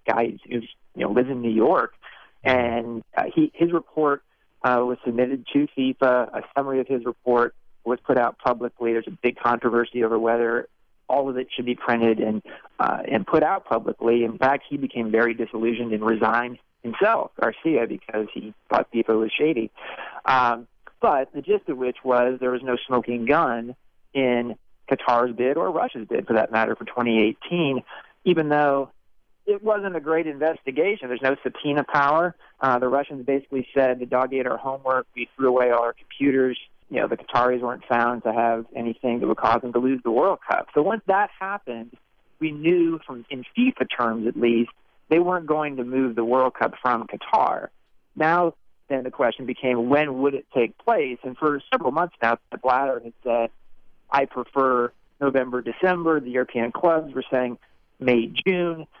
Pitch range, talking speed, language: 120-140 Hz, 185 wpm, English